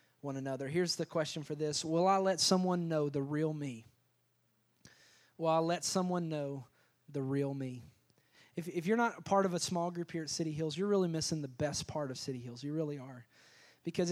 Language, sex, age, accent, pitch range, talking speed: English, male, 20-39, American, 155-200 Hz, 215 wpm